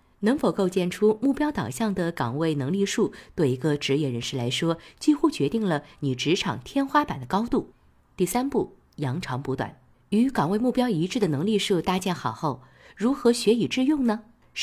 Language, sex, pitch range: Chinese, female, 140-220 Hz